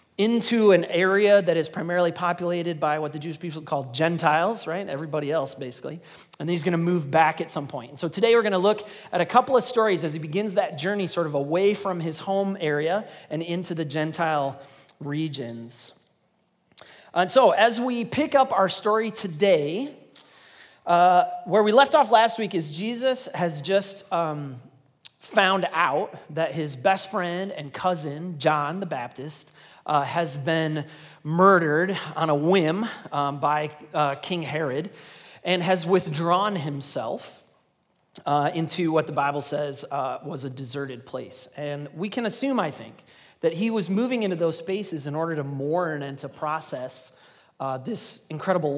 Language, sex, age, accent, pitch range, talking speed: English, male, 30-49, American, 150-195 Hz, 170 wpm